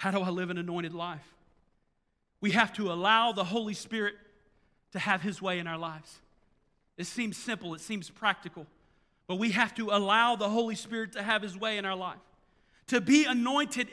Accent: American